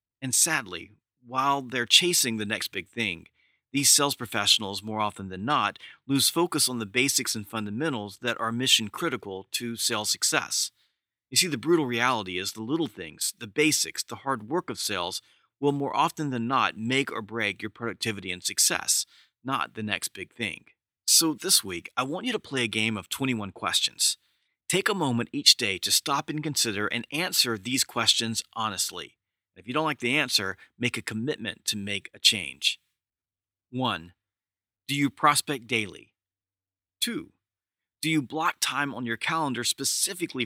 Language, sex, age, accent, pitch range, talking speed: English, male, 40-59, American, 105-140 Hz, 175 wpm